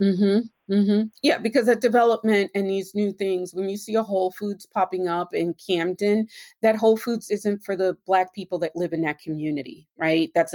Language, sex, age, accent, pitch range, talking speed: English, female, 30-49, American, 155-190 Hz, 210 wpm